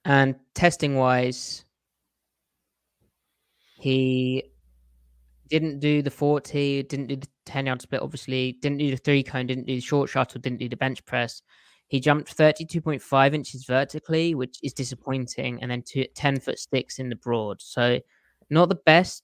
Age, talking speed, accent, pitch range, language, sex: 20-39, 160 wpm, British, 120-140 Hz, English, male